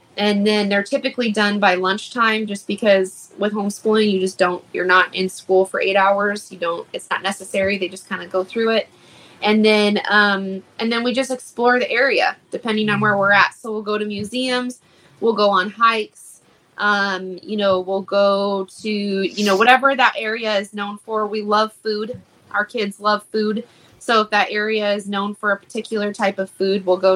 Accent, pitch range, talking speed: American, 195-225 Hz, 205 wpm